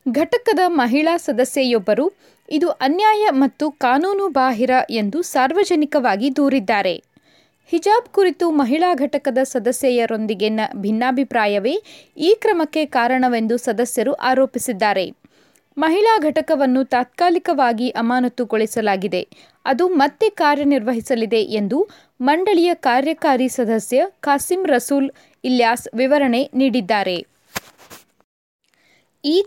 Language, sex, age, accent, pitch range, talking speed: Kannada, female, 20-39, native, 240-330 Hz, 80 wpm